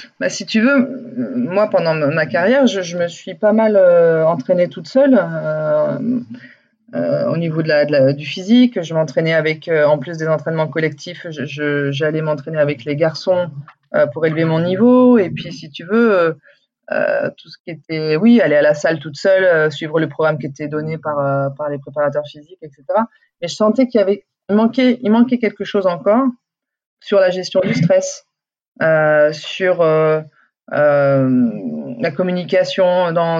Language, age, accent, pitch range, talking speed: French, 30-49, French, 155-210 Hz, 190 wpm